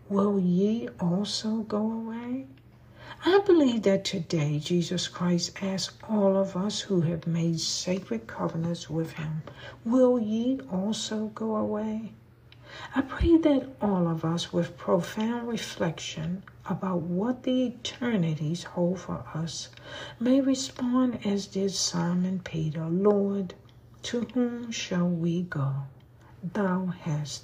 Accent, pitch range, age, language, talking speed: American, 160-215 Hz, 60-79, English, 125 wpm